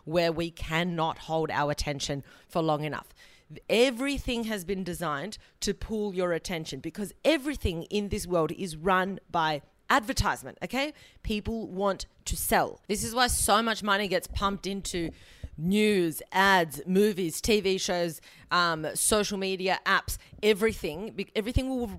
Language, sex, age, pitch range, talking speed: English, female, 30-49, 170-210 Hz, 140 wpm